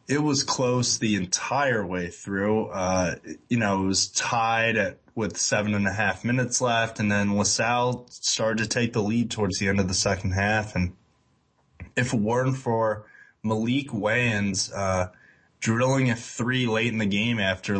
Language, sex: English, male